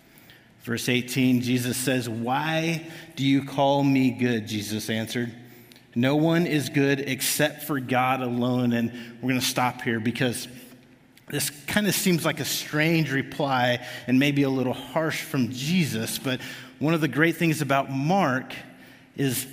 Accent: American